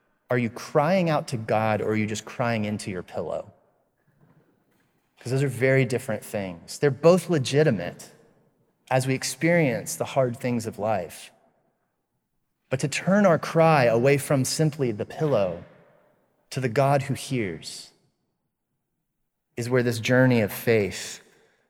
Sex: male